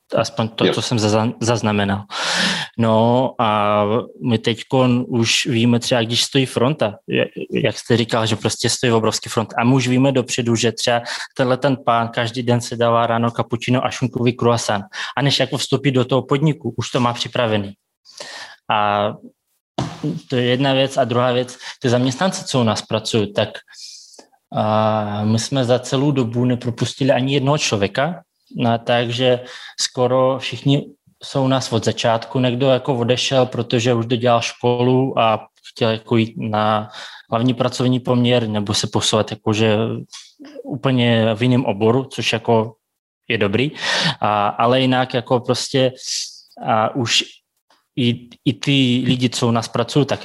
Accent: native